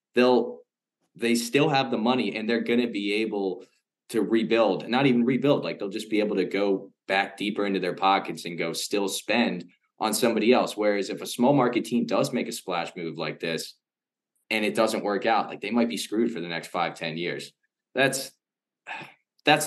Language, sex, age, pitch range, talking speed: English, male, 20-39, 85-110 Hz, 205 wpm